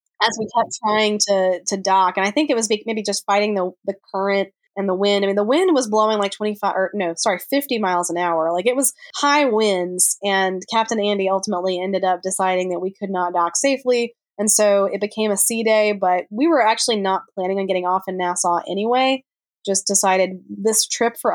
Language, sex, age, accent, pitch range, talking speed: English, female, 20-39, American, 190-225 Hz, 220 wpm